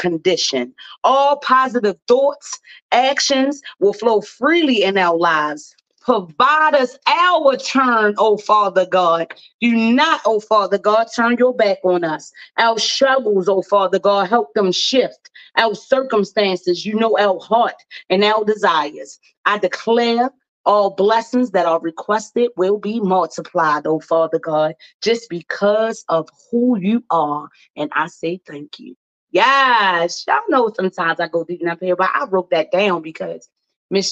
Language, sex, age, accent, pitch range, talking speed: English, female, 30-49, American, 180-235 Hz, 150 wpm